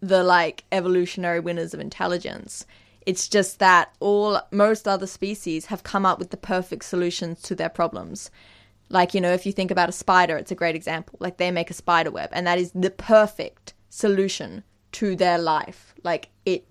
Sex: female